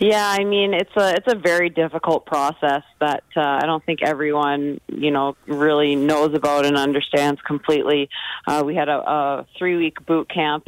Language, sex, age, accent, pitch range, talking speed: English, female, 30-49, American, 140-155 Hz, 180 wpm